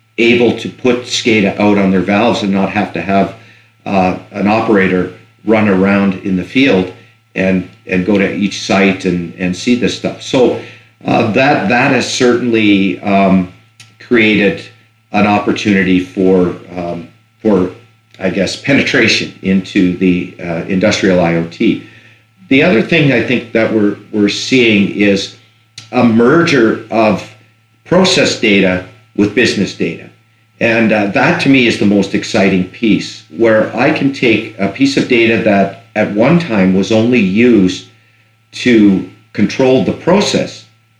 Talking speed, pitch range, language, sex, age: 145 wpm, 95-115 Hz, English, male, 50-69